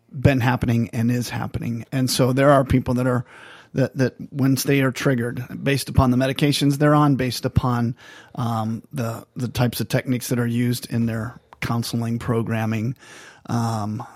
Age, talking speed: 30-49, 170 wpm